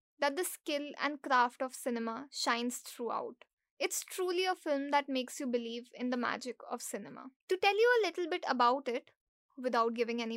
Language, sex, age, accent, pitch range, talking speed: English, female, 20-39, Indian, 245-350 Hz, 190 wpm